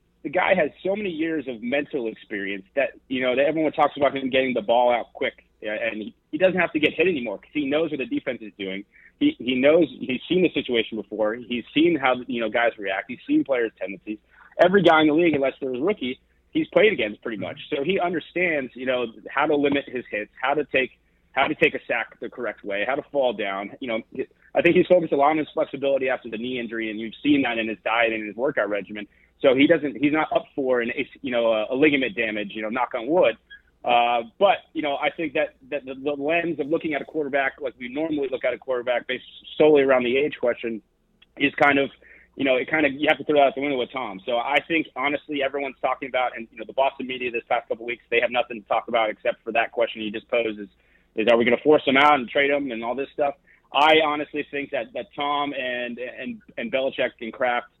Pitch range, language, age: 120-150 Hz, English, 30-49